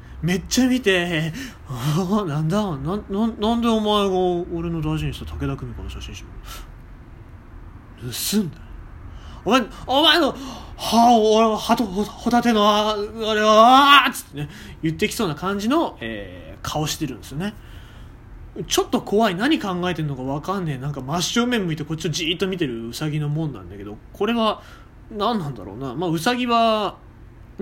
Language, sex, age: Japanese, male, 20-39